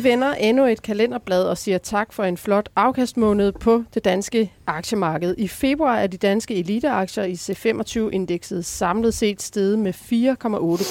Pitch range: 190-230 Hz